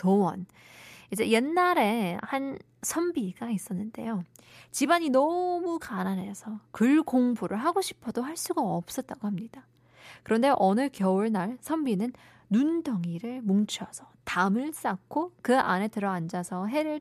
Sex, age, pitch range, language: female, 20-39, 190-270 Hz, Korean